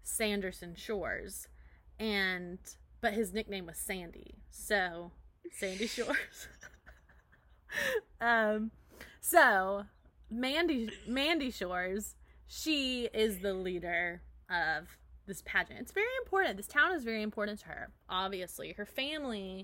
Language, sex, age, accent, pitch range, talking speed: English, female, 20-39, American, 190-265 Hz, 110 wpm